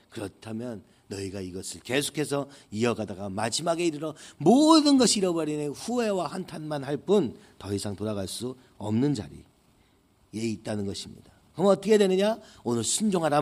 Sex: male